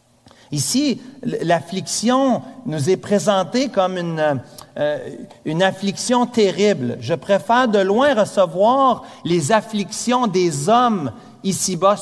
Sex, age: male, 40-59